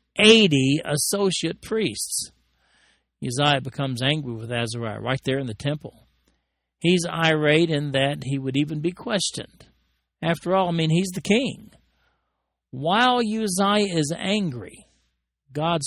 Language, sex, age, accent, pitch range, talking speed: English, male, 50-69, American, 125-170 Hz, 130 wpm